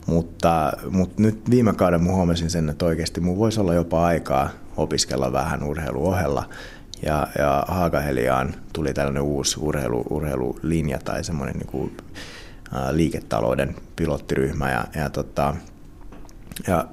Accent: native